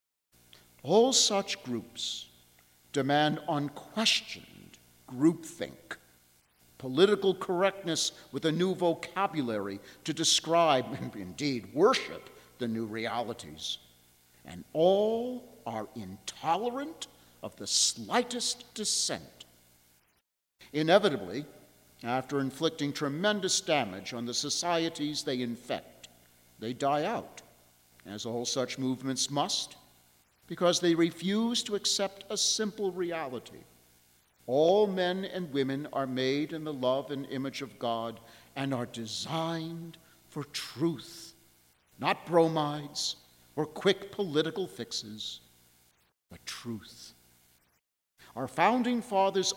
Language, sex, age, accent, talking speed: English, male, 50-69, American, 100 wpm